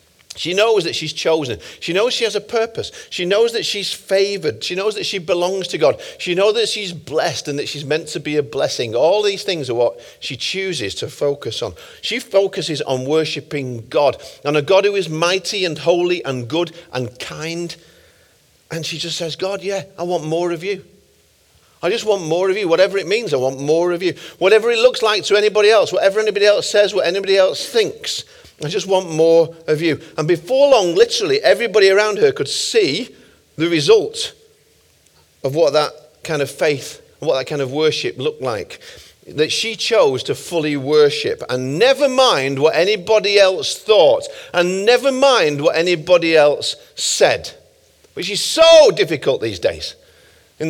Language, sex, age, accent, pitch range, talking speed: English, male, 50-69, British, 160-245 Hz, 190 wpm